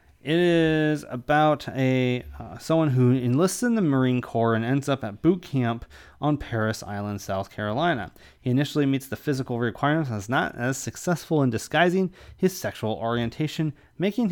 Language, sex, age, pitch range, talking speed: English, male, 30-49, 115-150 Hz, 170 wpm